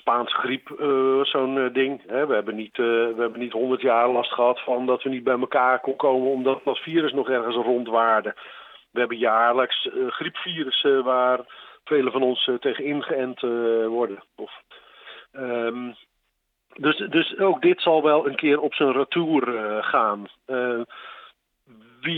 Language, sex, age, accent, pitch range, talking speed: Dutch, male, 50-69, Dutch, 120-150 Hz, 160 wpm